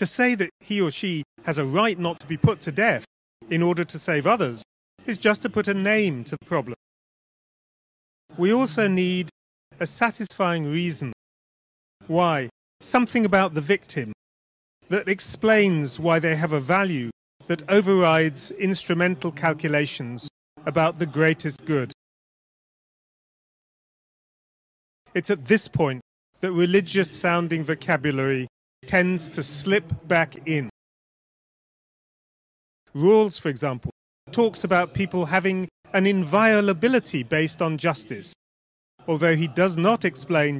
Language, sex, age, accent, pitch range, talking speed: Italian, male, 30-49, British, 150-190 Hz, 125 wpm